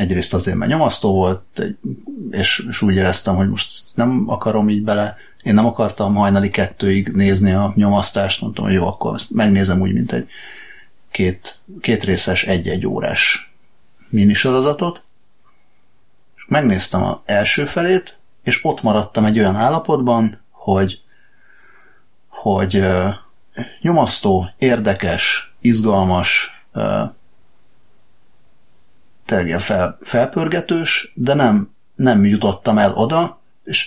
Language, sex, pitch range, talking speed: Hungarian, male, 95-120 Hz, 115 wpm